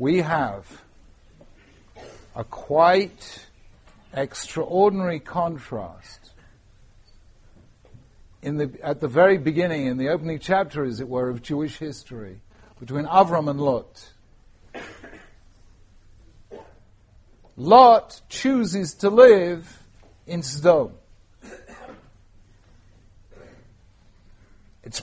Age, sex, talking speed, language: 60-79, male, 80 wpm, English